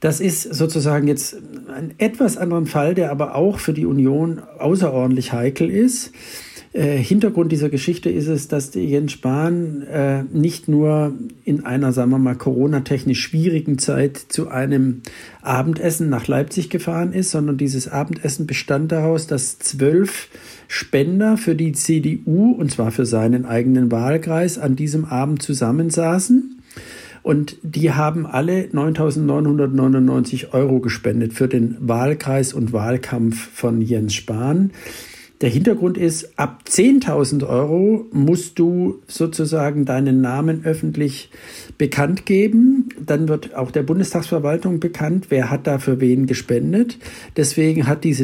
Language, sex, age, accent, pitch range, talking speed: German, male, 50-69, German, 130-165 Hz, 135 wpm